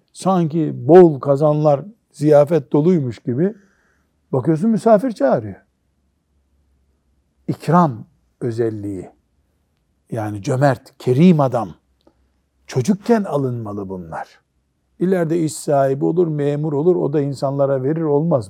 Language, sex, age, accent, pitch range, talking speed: Turkish, male, 60-79, native, 120-170 Hz, 95 wpm